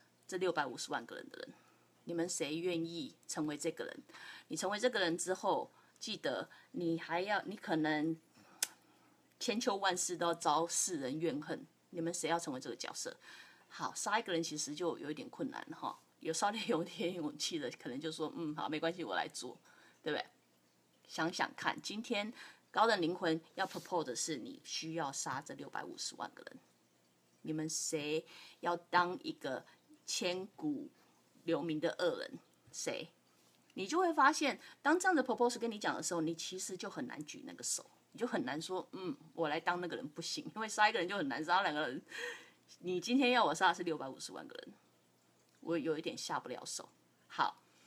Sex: female